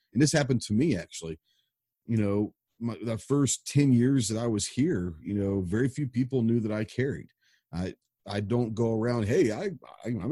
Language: English